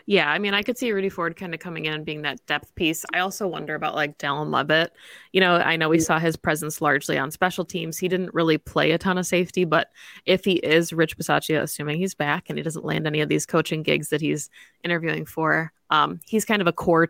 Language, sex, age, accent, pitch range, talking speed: English, female, 20-39, American, 155-185 Hz, 255 wpm